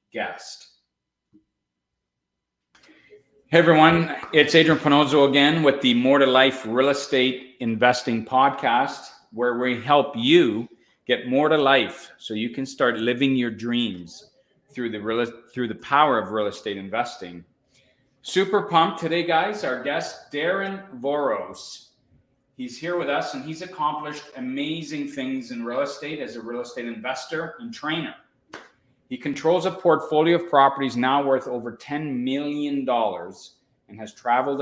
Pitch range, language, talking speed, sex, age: 120-150 Hz, English, 140 wpm, male, 40-59